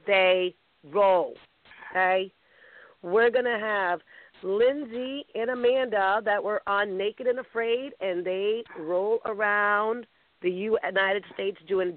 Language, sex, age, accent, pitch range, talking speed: English, female, 40-59, American, 175-220 Hz, 115 wpm